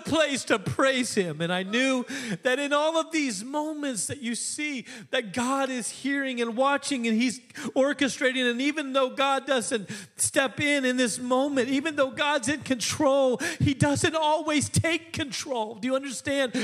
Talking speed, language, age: 175 wpm, English, 40-59